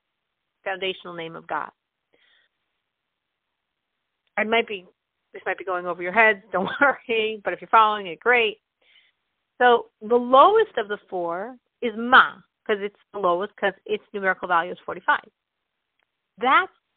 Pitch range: 210-310 Hz